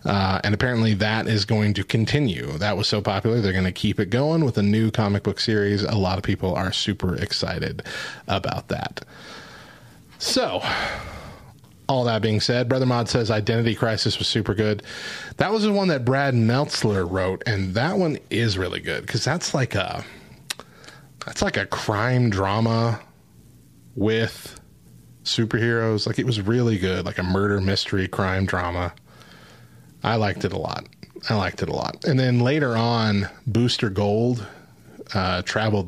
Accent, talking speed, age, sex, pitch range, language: American, 165 wpm, 30-49, male, 100-120 Hz, English